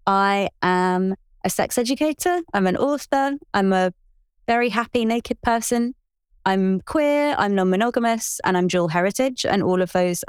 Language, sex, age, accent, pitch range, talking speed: English, female, 20-39, British, 170-215 Hz, 150 wpm